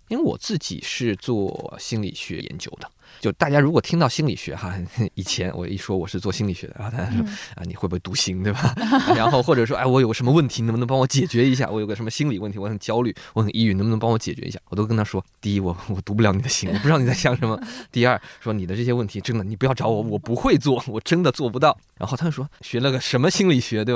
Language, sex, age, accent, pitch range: Chinese, male, 20-39, native, 95-130 Hz